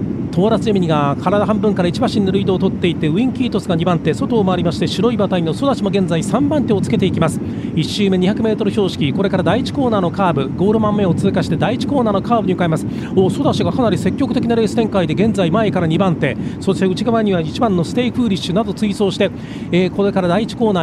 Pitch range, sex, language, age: 185-235 Hz, male, Japanese, 40-59